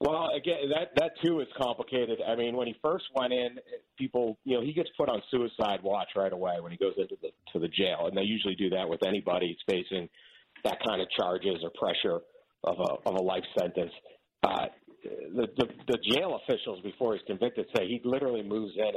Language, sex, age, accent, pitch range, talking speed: English, male, 50-69, American, 100-130 Hz, 215 wpm